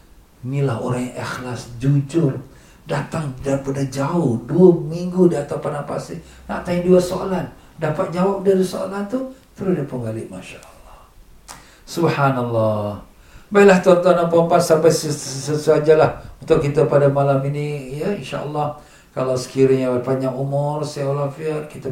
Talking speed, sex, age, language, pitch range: 130 wpm, male, 50-69, Malay, 120-145 Hz